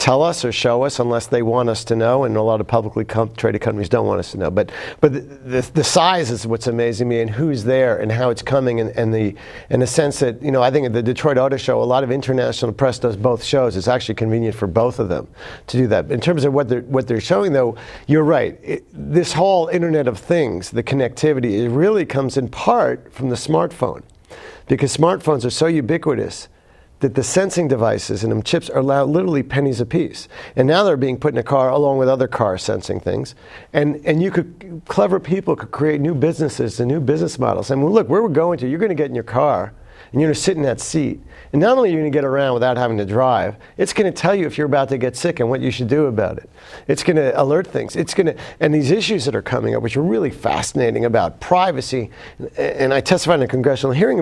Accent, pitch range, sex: American, 120-155 Hz, male